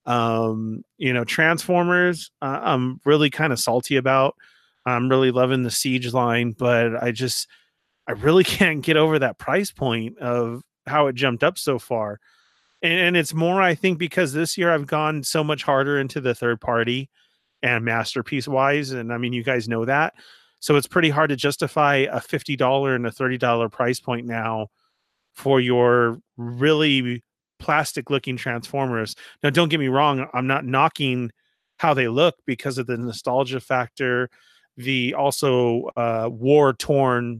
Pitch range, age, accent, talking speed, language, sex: 120-150 Hz, 30-49, American, 170 wpm, English, male